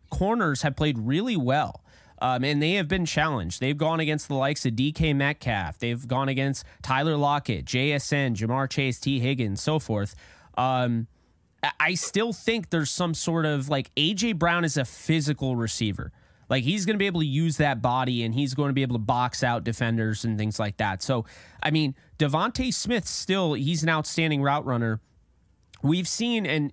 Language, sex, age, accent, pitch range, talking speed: English, male, 20-39, American, 120-155 Hz, 190 wpm